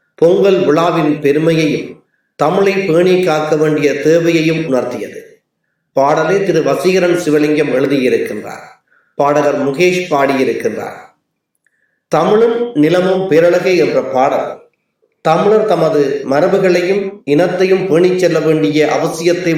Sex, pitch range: male, 150-185 Hz